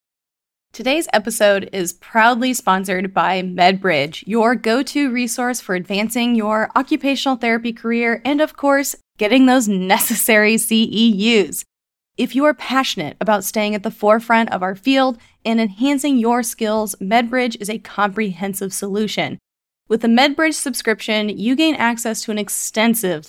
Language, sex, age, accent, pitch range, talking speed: English, female, 20-39, American, 210-265 Hz, 140 wpm